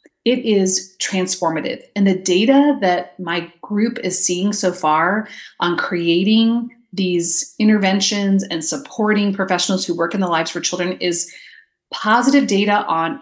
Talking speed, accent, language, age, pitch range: 140 wpm, American, English, 30-49, 175-230 Hz